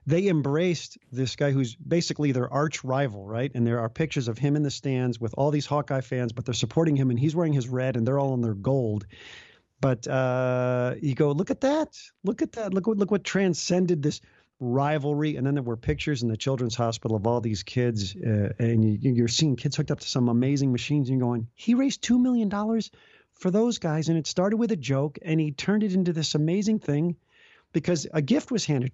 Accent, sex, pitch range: American, male, 125-175 Hz